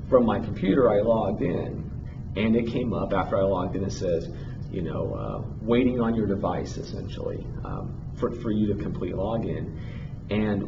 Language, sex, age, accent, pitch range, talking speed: English, male, 40-59, American, 100-125 Hz, 180 wpm